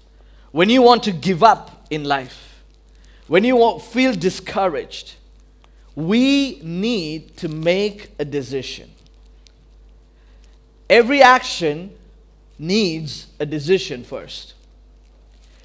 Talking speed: 90 wpm